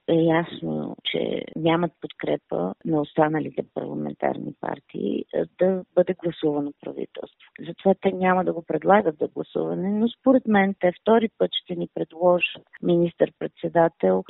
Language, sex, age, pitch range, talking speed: Bulgarian, female, 40-59, 155-210 Hz, 140 wpm